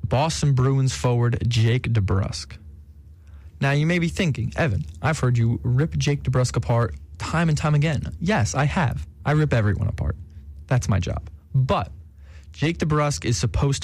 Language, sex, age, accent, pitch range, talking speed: English, male, 20-39, American, 105-140 Hz, 160 wpm